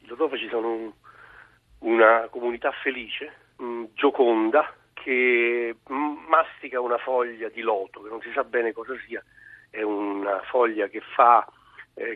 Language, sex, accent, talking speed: Italian, male, native, 140 wpm